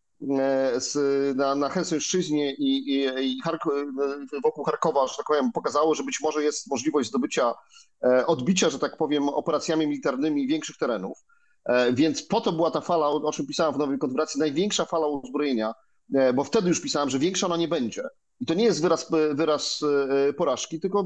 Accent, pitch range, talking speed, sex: native, 145-200 Hz, 170 wpm, male